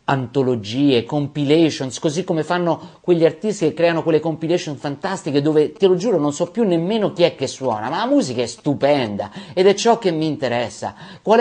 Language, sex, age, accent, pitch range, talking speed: Italian, male, 50-69, native, 140-180 Hz, 190 wpm